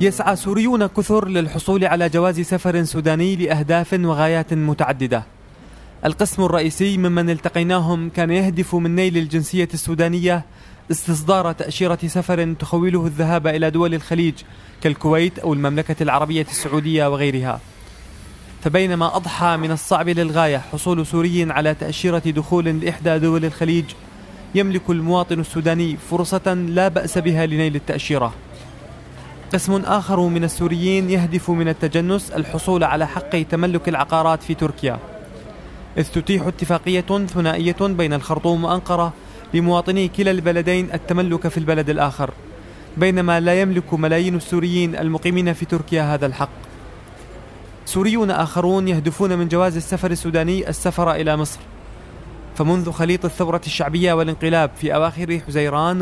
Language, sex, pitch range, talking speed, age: Arabic, male, 155-180 Hz, 120 wpm, 20-39